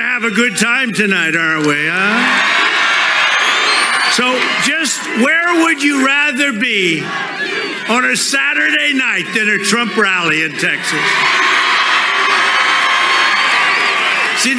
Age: 50-69